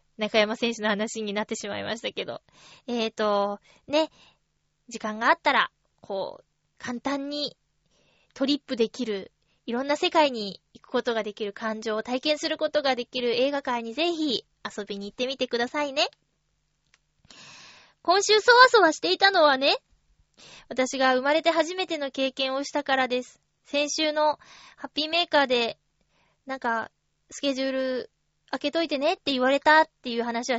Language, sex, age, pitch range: Japanese, female, 20-39, 225-300 Hz